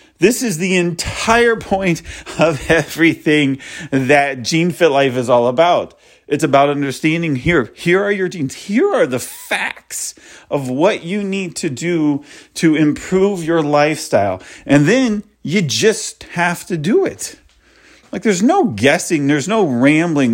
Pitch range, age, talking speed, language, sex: 140-185 Hz, 40-59, 150 wpm, English, male